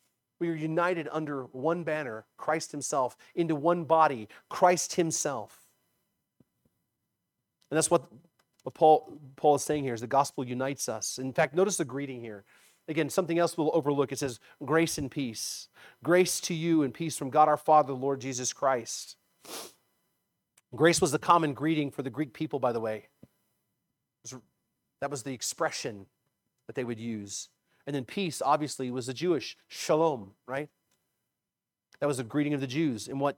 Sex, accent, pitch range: male, American, 125-165 Hz